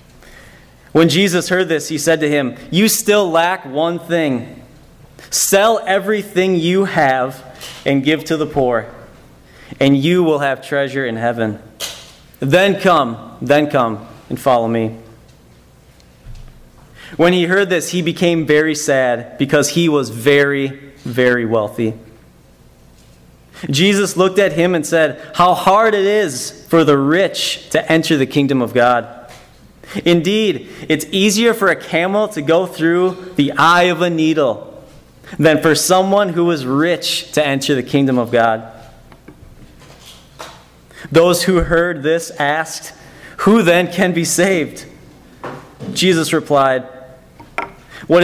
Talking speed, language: 135 wpm, English